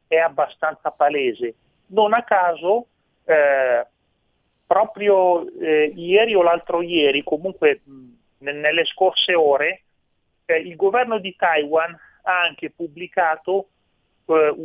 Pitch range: 145-180 Hz